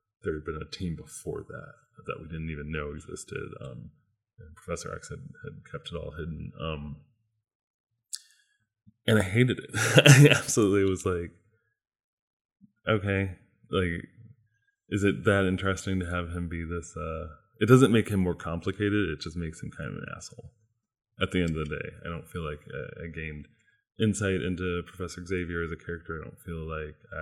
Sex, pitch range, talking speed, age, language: male, 85-110 Hz, 180 wpm, 20-39, English